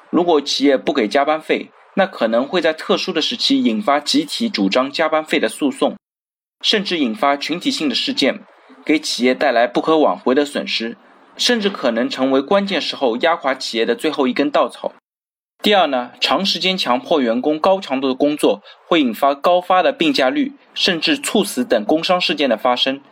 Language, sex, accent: Chinese, male, native